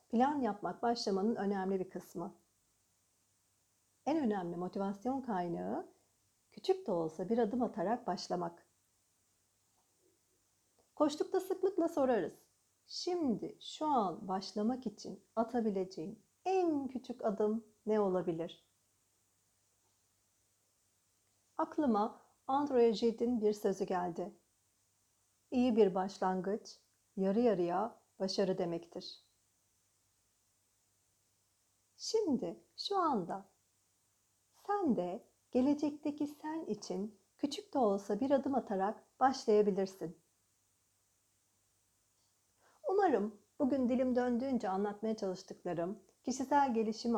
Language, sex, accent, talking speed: Turkish, female, native, 85 wpm